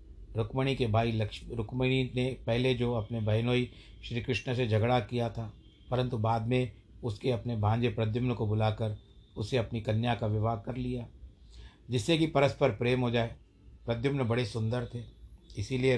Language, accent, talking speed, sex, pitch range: Hindi, native, 165 wpm, male, 110-125 Hz